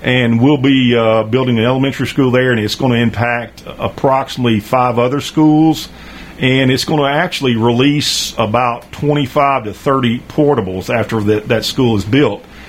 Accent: American